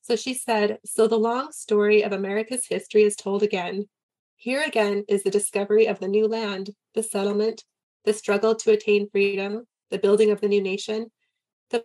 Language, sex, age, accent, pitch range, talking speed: English, female, 20-39, American, 200-230 Hz, 180 wpm